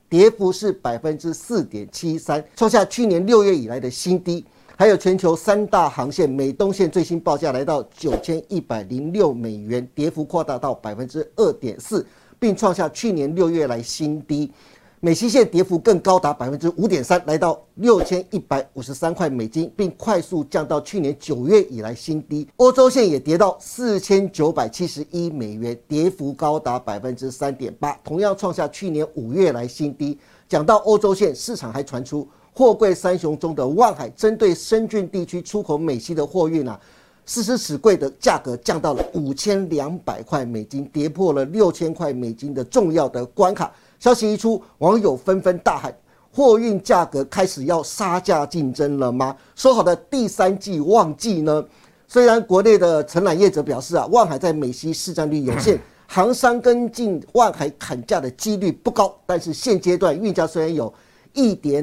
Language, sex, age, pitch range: Chinese, male, 50-69, 145-200 Hz